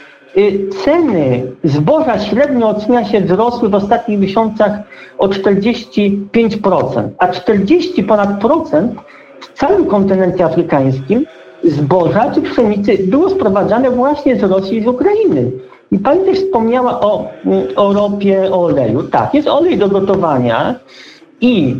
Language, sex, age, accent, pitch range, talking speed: Polish, male, 50-69, native, 190-245 Hz, 125 wpm